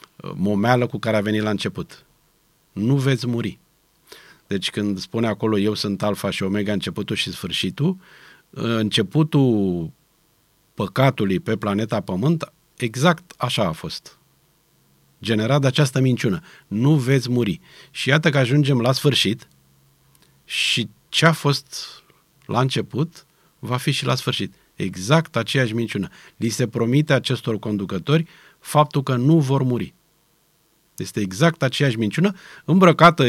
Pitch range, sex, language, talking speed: 105-155 Hz, male, Romanian, 130 wpm